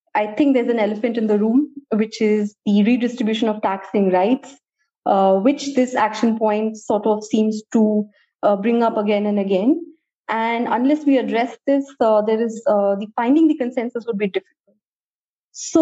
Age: 20-39